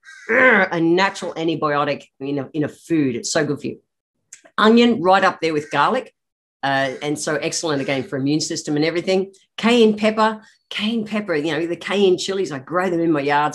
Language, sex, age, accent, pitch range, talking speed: English, female, 50-69, Australian, 145-195 Hz, 195 wpm